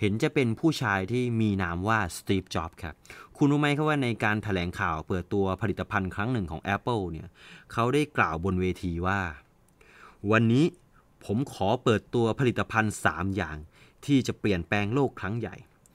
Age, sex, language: 30-49, male, English